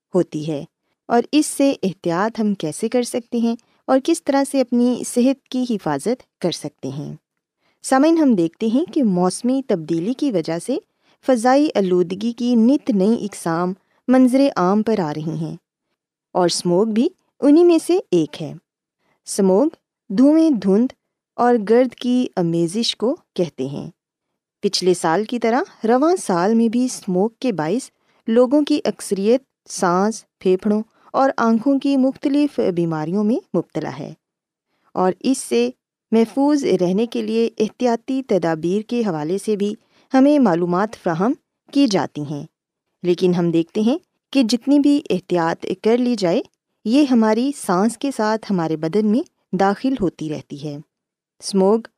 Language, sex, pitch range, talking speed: Urdu, female, 180-260 Hz, 150 wpm